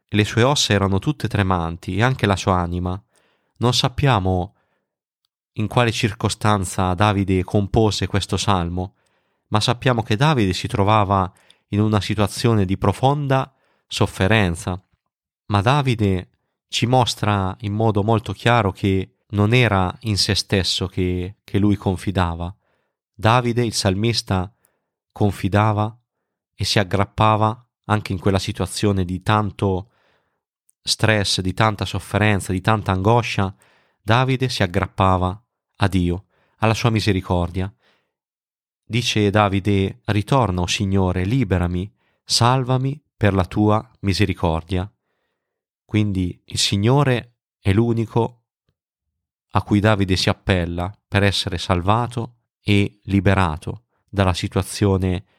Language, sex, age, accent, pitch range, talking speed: Italian, male, 30-49, native, 95-110 Hz, 115 wpm